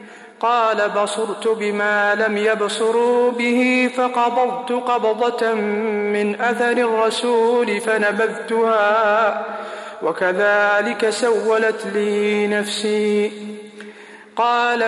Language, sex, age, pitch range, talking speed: English, male, 50-69, 210-240 Hz, 70 wpm